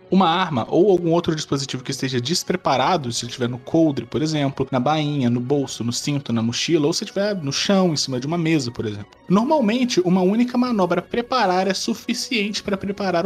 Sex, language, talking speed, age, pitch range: male, Portuguese, 210 wpm, 20-39, 135-200 Hz